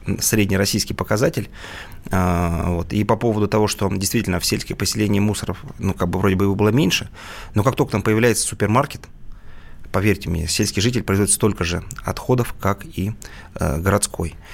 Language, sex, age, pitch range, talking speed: Russian, male, 30-49, 90-105 Hz, 155 wpm